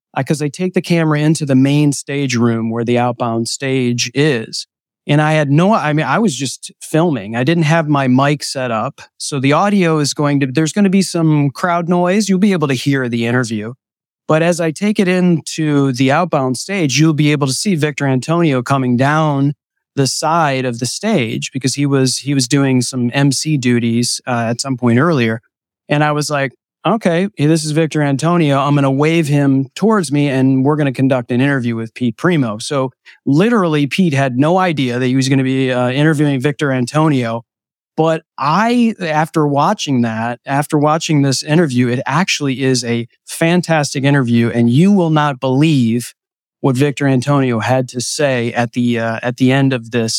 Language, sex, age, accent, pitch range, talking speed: English, male, 30-49, American, 125-155 Hz, 200 wpm